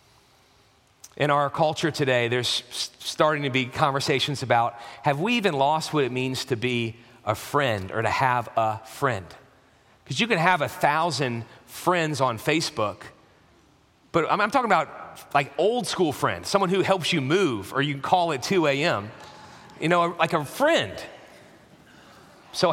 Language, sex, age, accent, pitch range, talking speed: English, male, 40-59, American, 130-180 Hz, 160 wpm